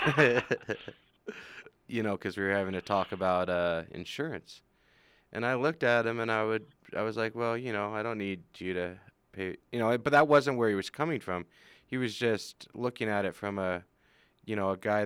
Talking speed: 210 wpm